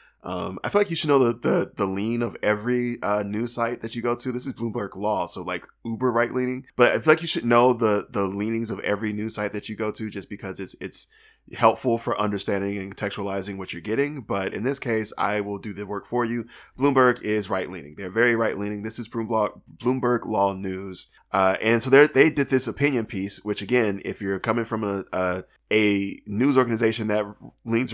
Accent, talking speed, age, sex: American, 230 wpm, 20-39, male